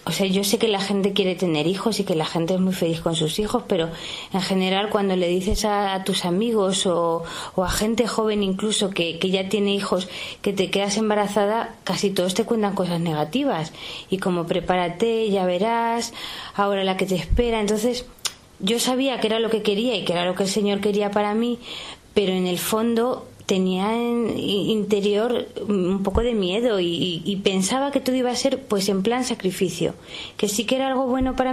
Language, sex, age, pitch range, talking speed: Spanish, female, 20-39, 185-225 Hz, 205 wpm